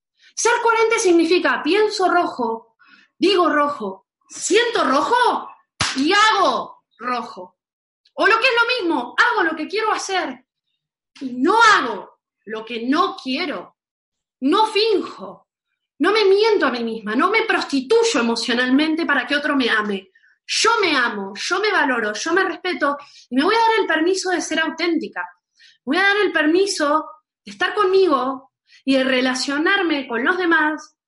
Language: Spanish